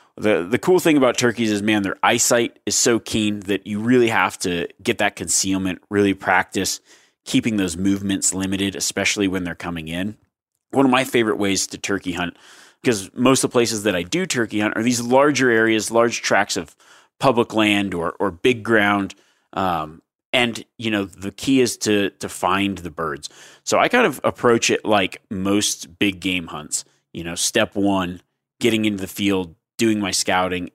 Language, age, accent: English, 30-49, American